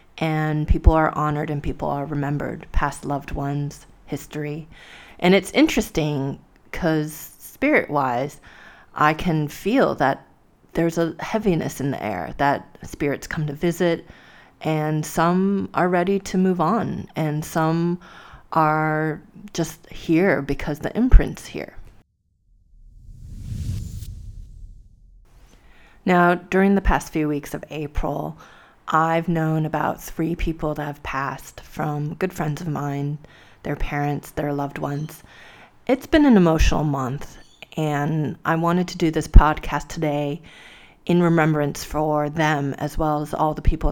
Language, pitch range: English, 145-165 Hz